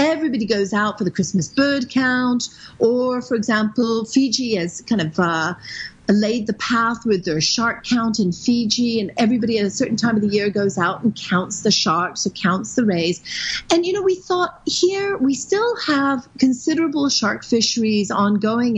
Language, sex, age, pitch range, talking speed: English, female, 40-59, 210-275 Hz, 180 wpm